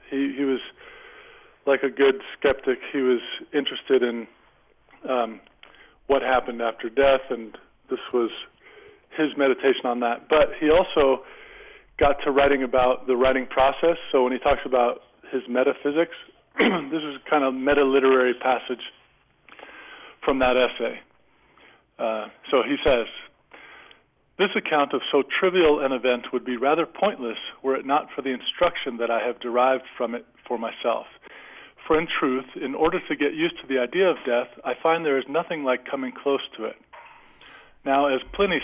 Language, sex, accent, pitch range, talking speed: English, male, American, 125-150 Hz, 160 wpm